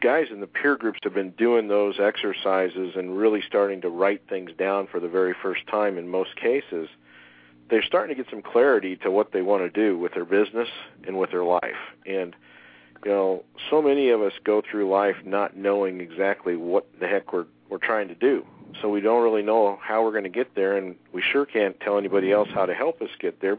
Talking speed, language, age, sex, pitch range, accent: 225 wpm, English, 50-69, male, 95-120 Hz, American